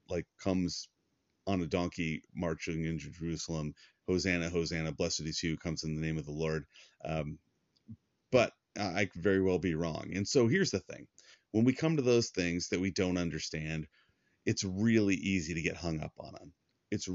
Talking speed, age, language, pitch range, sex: 185 wpm, 30-49, English, 85-110 Hz, male